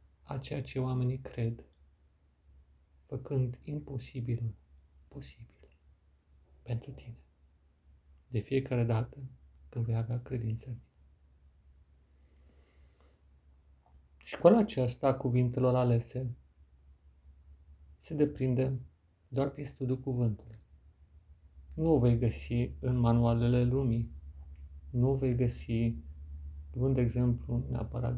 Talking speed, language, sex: 90 wpm, Romanian, male